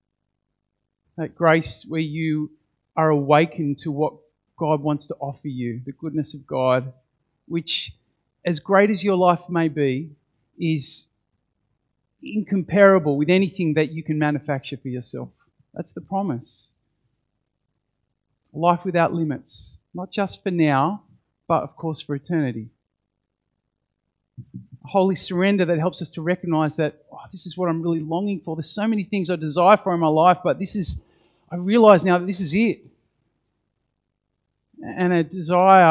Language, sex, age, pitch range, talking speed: English, male, 50-69, 135-180 Hz, 145 wpm